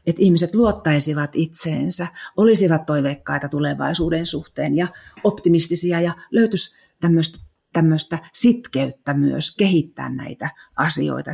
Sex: female